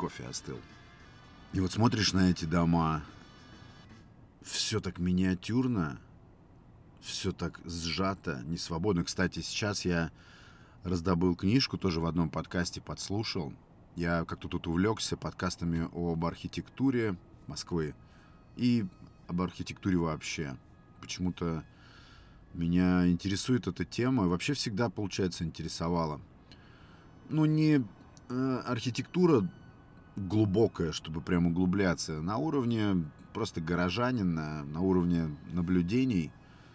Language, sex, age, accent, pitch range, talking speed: Russian, male, 30-49, native, 85-110 Hz, 100 wpm